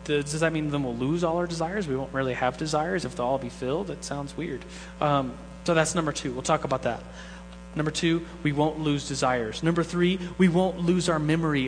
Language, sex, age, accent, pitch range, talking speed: English, male, 30-49, American, 115-160 Hz, 225 wpm